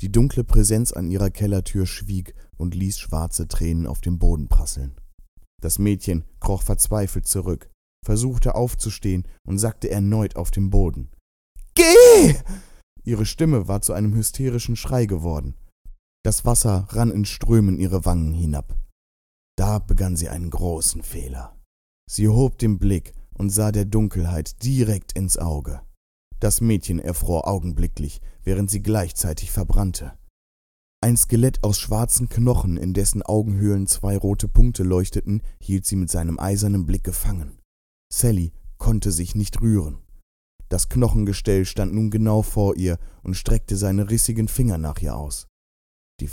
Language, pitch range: German, 80-105 Hz